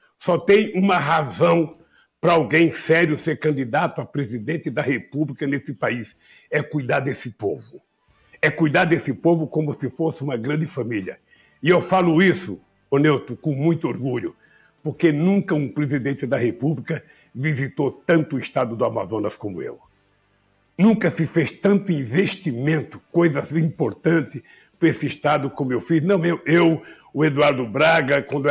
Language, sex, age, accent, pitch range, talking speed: Portuguese, male, 60-79, Brazilian, 140-170 Hz, 150 wpm